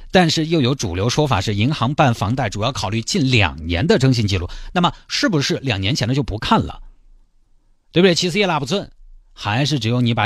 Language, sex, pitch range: Chinese, male, 100-150 Hz